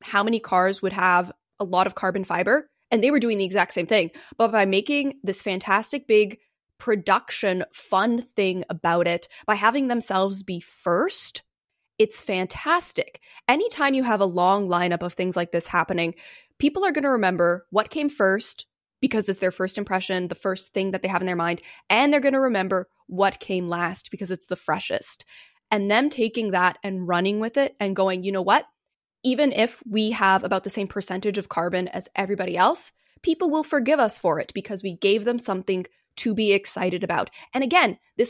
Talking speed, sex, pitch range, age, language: 195 wpm, female, 185-245 Hz, 10-29, English